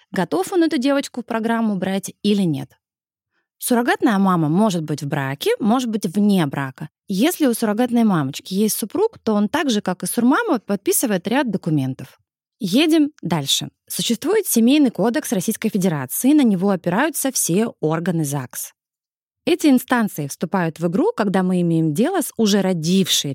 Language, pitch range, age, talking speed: Russian, 165-240 Hz, 20-39, 155 wpm